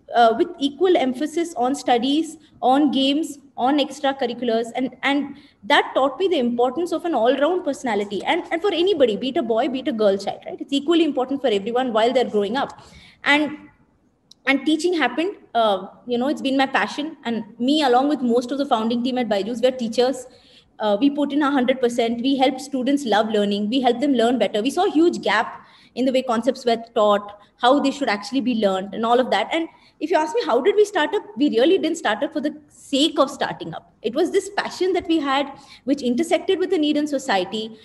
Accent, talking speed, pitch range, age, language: Indian, 225 wpm, 235-305 Hz, 20-39, English